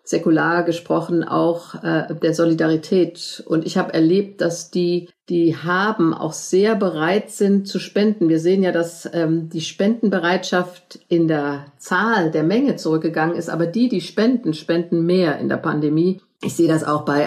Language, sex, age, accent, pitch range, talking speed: German, female, 50-69, German, 165-185 Hz, 165 wpm